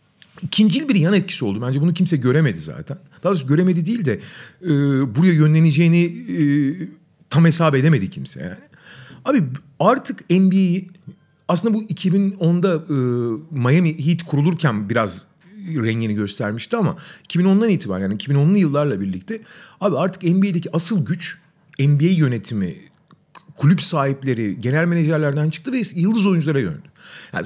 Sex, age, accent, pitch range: male, 40-59, native, 135-180 Hz